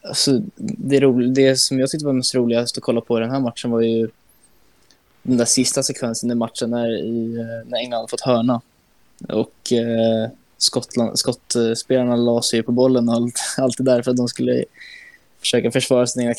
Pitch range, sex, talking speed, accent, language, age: 115-130 Hz, male, 175 wpm, native, Swedish, 10-29